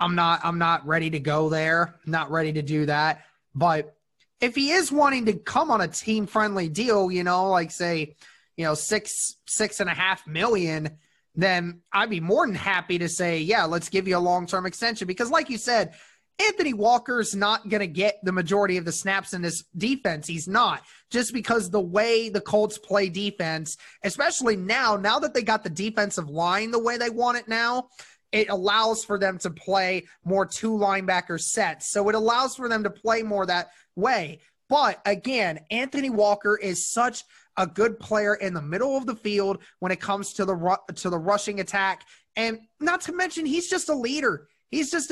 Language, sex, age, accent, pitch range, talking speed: English, male, 20-39, American, 175-225 Hz, 195 wpm